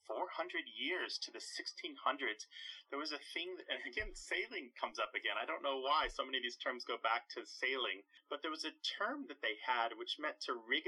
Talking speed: 225 wpm